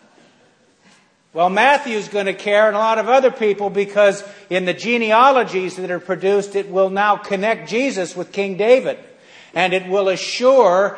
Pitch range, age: 195-235 Hz, 50-69